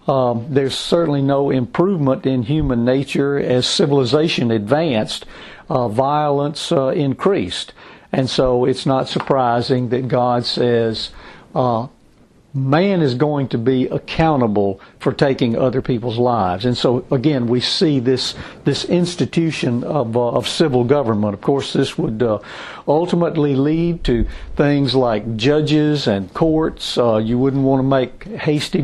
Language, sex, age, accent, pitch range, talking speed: English, male, 60-79, American, 115-145 Hz, 140 wpm